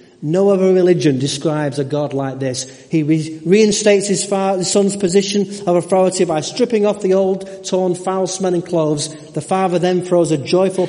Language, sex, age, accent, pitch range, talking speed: English, male, 40-59, British, 125-160 Hz, 180 wpm